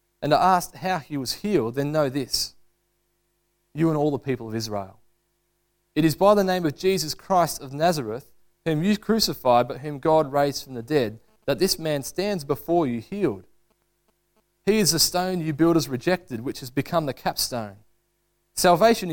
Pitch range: 135-180 Hz